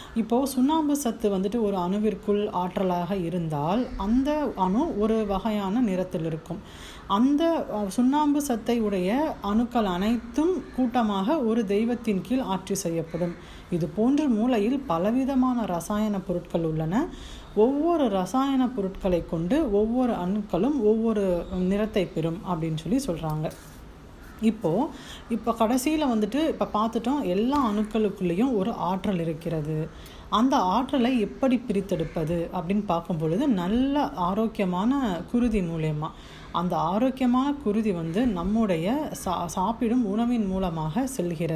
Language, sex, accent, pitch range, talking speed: Tamil, female, native, 180-250 Hz, 110 wpm